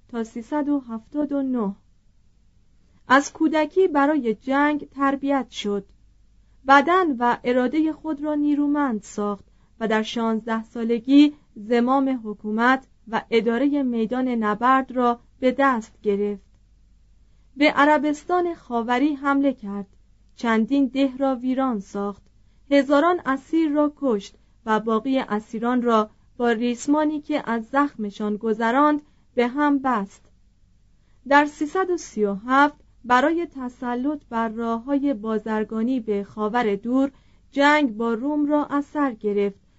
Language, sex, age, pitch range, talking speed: Persian, female, 30-49, 215-285 Hz, 110 wpm